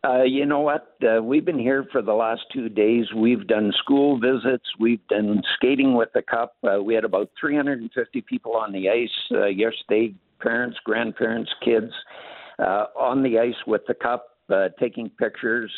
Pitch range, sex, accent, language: 110-135 Hz, male, American, English